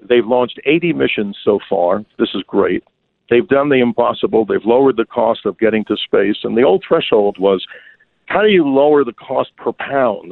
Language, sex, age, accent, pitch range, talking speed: English, male, 50-69, American, 110-135 Hz, 200 wpm